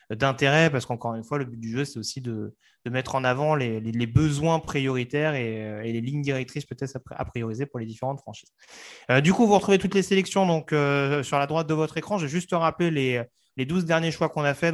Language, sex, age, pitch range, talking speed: French, male, 30-49, 130-160 Hz, 245 wpm